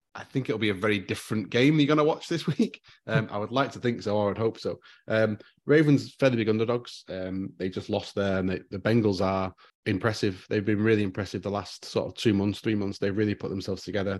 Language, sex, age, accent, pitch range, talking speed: English, male, 30-49, British, 100-115 Hz, 245 wpm